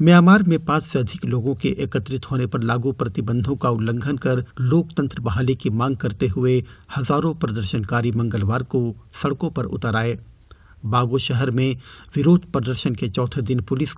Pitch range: 120-140 Hz